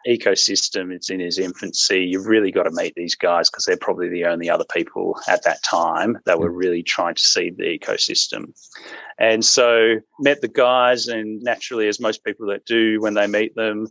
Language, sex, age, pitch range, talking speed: English, male, 30-49, 90-110 Hz, 200 wpm